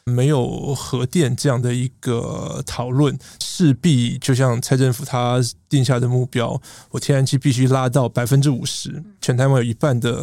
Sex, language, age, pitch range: male, Chinese, 20-39, 125-145 Hz